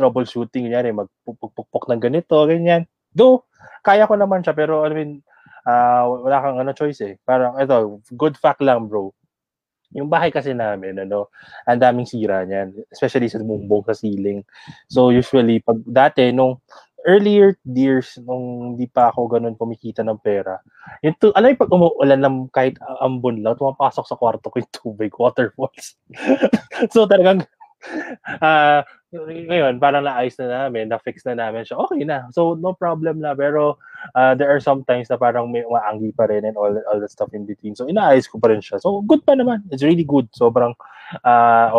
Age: 20-39